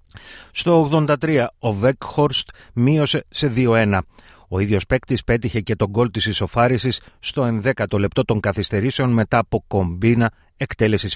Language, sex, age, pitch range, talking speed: Greek, male, 30-49, 105-130 Hz, 135 wpm